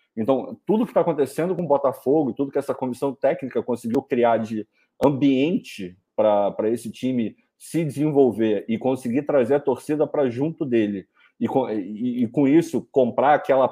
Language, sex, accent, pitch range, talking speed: Portuguese, male, Brazilian, 105-140 Hz, 155 wpm